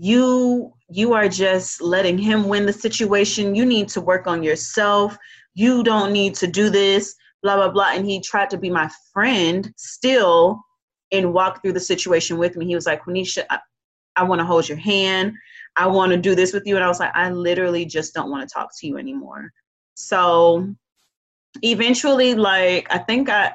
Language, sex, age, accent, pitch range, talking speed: English, female, 30-49, American, 165-215 Hz, 195 wpm